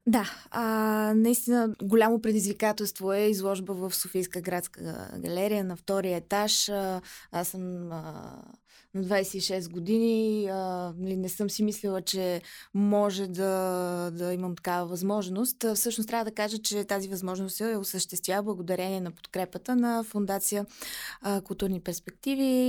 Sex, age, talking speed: female, 20-39, 125 wpm